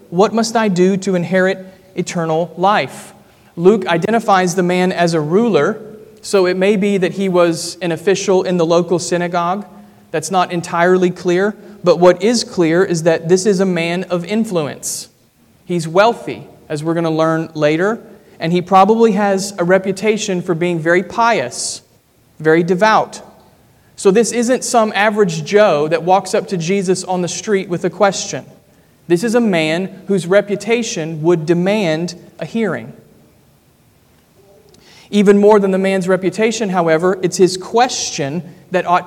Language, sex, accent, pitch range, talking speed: English, male, American, 175-210 Hz, 160 wpm